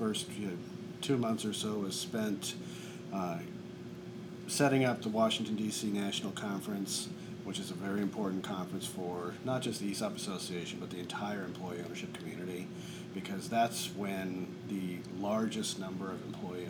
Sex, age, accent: male, 40-59, American